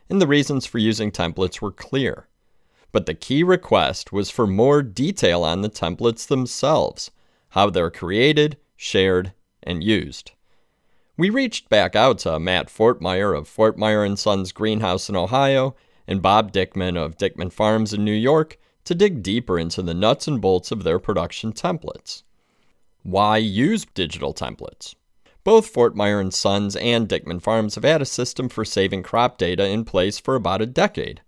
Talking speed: 165 wpm